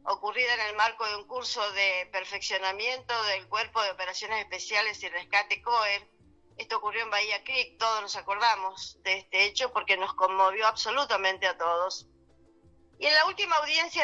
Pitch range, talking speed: 200-275 Hz, 165 wpm